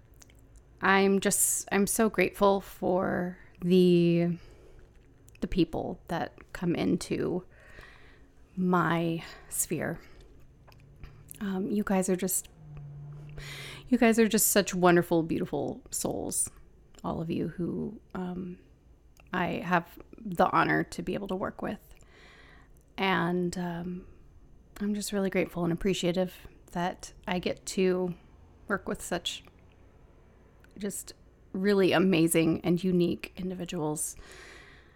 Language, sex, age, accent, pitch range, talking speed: English, female, 30-49, American, 165-190 Hz, 110 wpm